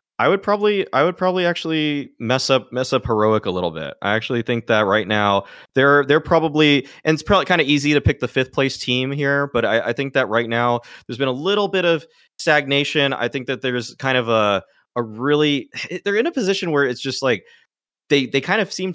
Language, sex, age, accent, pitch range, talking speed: English, male, 20-39, American, 105-140 Hz, 235 wpm